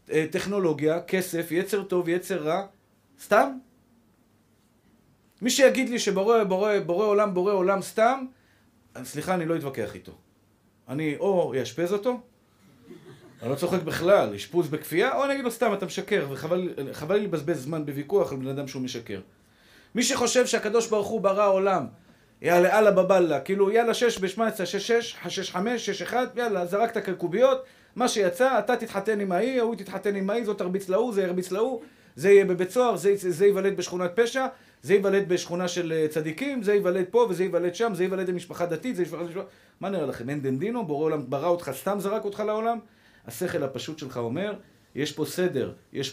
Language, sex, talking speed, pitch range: Hebrew, male, 175 wpm, 150-210 Hz